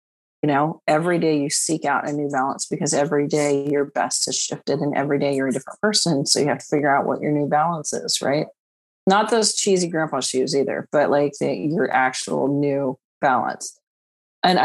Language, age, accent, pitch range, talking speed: English, 30-49, American, 140-165 Hz, 205 wpm